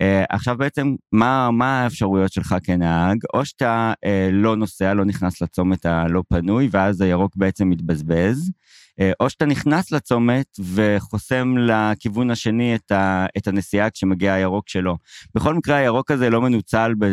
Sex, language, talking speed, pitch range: male, Hebrew, 145 wpm, 95-125 Hz